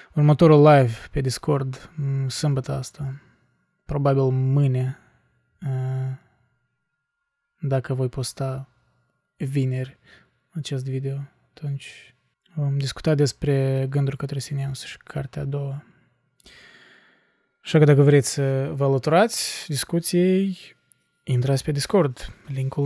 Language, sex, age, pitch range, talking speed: Romanian, male, 20-39, 130-160 Hz, 95 wpm